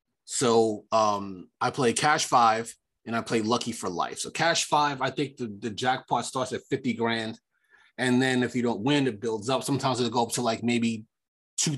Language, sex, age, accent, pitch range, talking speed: English, male, 30-49, American, 115-150 Hz, 210 wpm